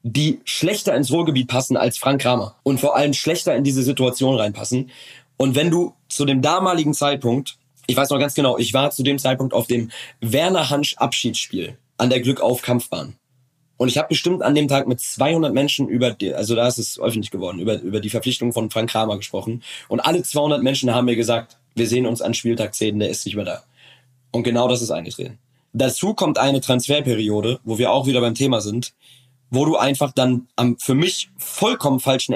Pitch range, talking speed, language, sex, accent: 120-150 Hz, 200 wpm, German, male, German